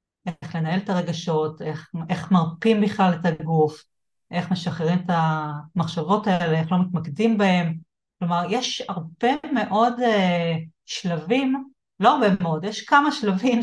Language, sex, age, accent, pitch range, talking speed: Hebrew, female, 30-49, native, 160-190 Hz, 135 wpm